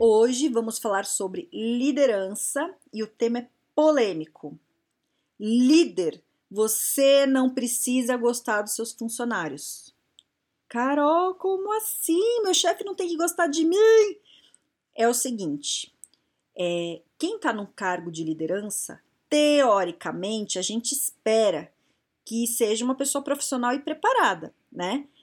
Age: 40-59